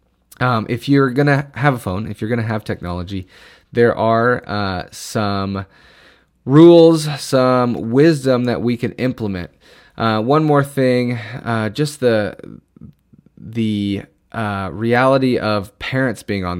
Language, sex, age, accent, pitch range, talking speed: English, male, 30-49, American, 100-125 Hz, 140 wpm